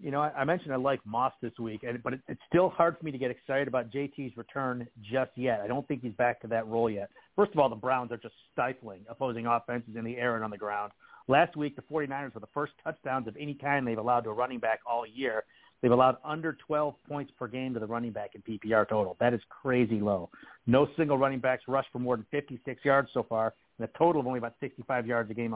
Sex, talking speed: male, 255 wpm